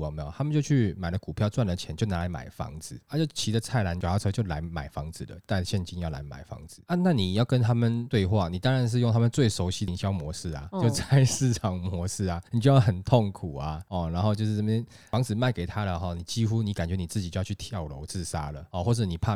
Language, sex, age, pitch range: Chinese, male, 20-39, 85-120 Hz